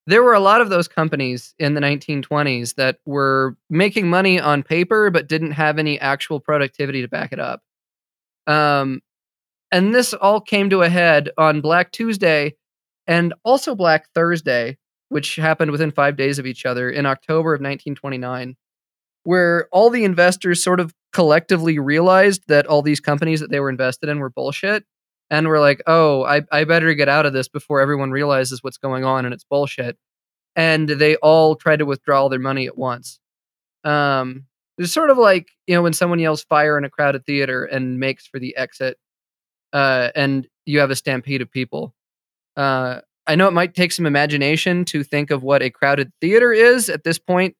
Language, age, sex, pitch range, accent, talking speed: English, 20-39, male, 135-170 Hz, American, 190 wpm